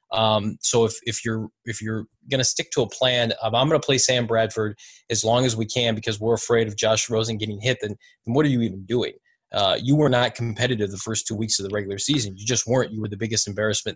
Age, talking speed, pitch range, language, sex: 20-39, 260 wpm, 110-125 Hz, English, male